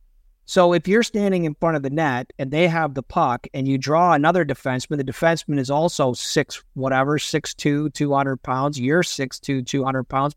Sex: male